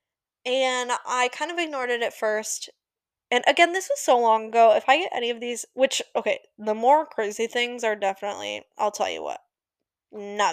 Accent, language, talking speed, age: American, English, 195 wpm, 10-29